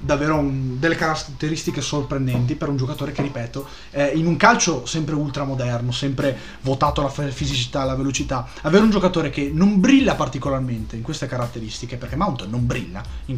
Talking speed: 175 wpm